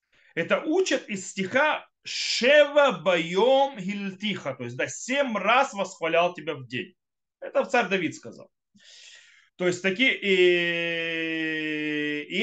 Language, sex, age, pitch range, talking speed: Russian, male, 30-49, 155-210 Hz, 115 wpm